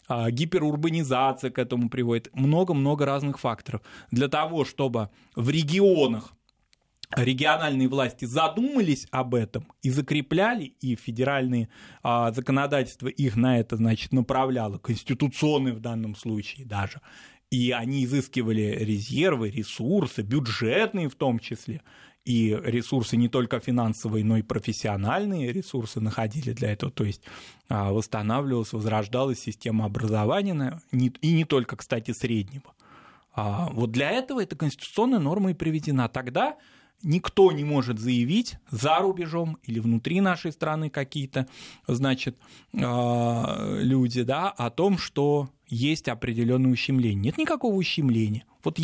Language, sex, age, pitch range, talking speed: Russian, male, 20-39, 120-160 Hz, 120 wpm